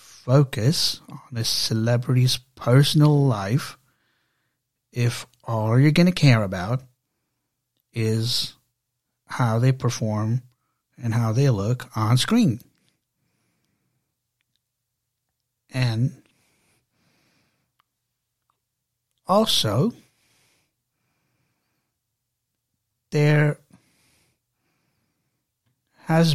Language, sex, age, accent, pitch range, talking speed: English, male, 60-79, American, 120-145 Hz, 60 wpm